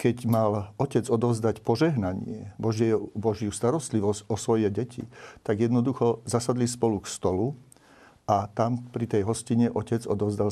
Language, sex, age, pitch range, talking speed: Slovak, male, 50-69, 105-125 Hz, 135 wpm